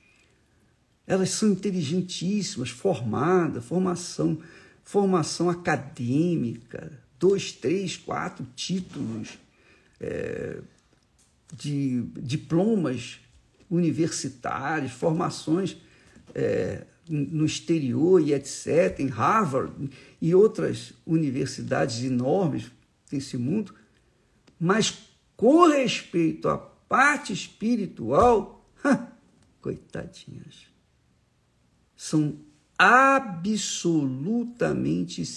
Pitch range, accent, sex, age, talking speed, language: 130-190 Hz, Brazilian, male, 50-69, 60 wpm, Portuguese